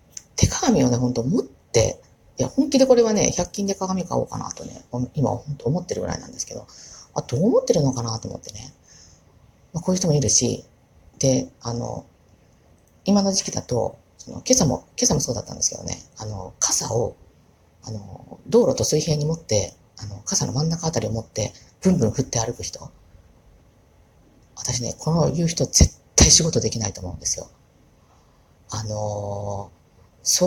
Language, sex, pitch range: Japanese, female, 110-185 Hz